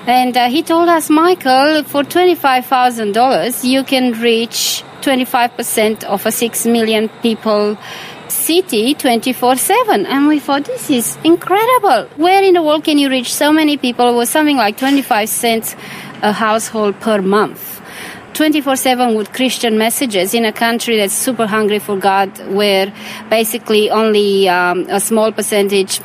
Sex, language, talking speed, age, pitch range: female, English, 145 wpm, 20-39, 210-255 Hz